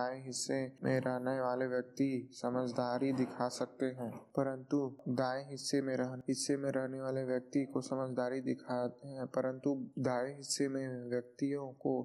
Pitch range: 130-140 Hz